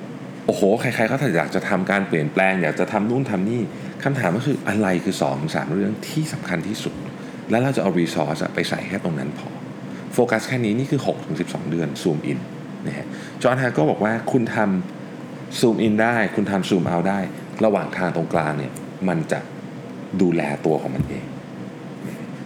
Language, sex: Thai, male